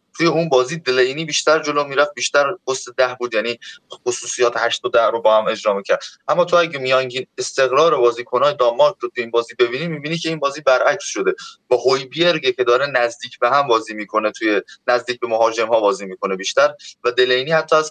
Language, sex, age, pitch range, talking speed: Persian, male, 20-39, 120-155 Hz, 200 wpm